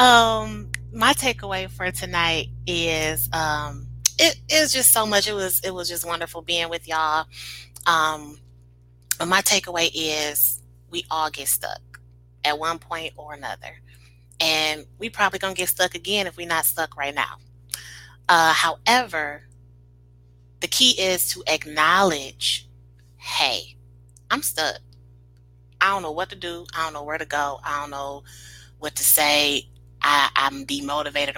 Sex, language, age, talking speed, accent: female, English, 30-49, 155 wpm, American